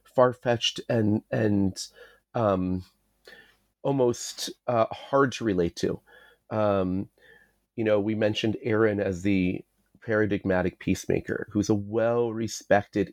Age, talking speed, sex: 30-49, 105 wpm, male